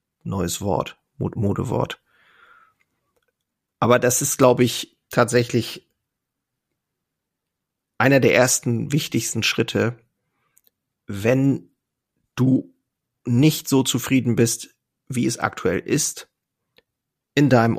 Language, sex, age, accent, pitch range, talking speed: German, male, 40-59, German, 110-130 Hz, 90 wpm